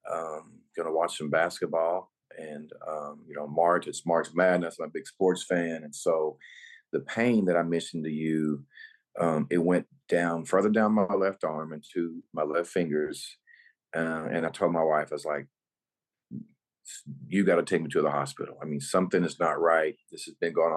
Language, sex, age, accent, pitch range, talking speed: English, male, 40-59, American, 80-110 Hz, 190 wpm